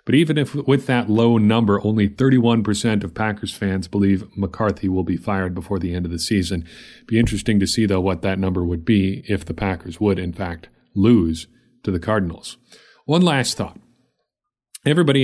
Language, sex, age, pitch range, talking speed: English, male, 40-59, 95-120 Hz, 195 wpm